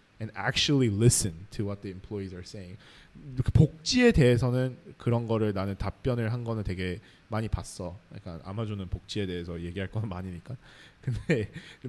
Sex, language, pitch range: male, Korean, 105-145 Hz